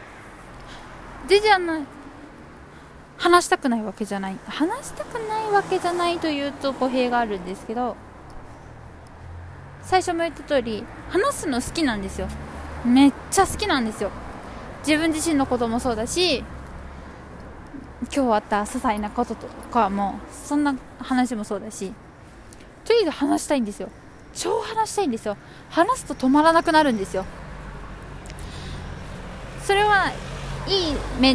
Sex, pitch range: female, 215-295 Hz